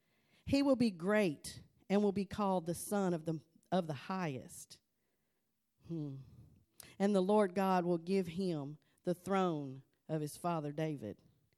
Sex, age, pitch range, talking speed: female, 40-59, 170-215 Hz, 150 wpm